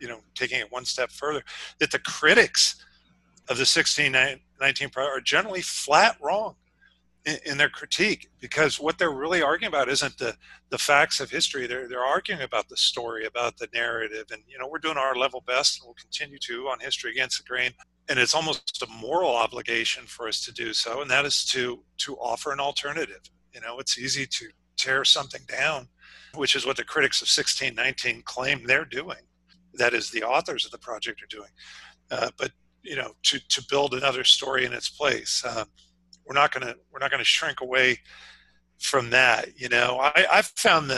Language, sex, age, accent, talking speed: English, male, 50-69, American, 190 wpm